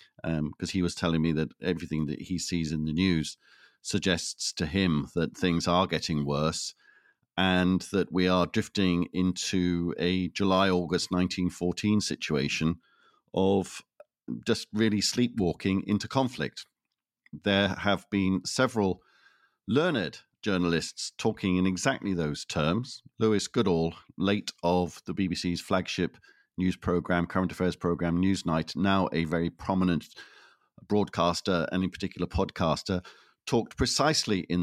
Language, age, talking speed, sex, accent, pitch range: English, 50-69, 130 wpm, male, British, 85-100 Hz